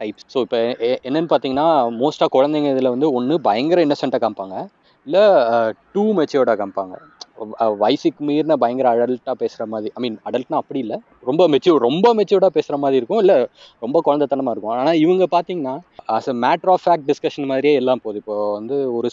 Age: 20-39